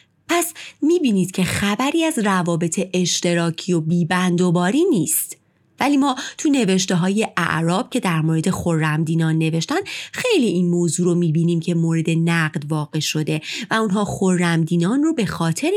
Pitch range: 170-260 Hz